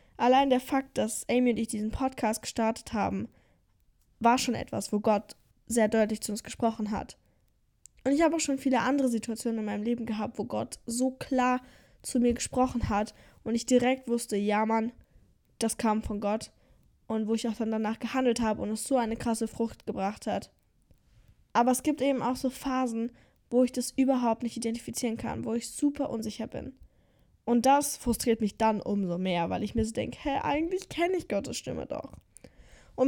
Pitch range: 220-260 Hz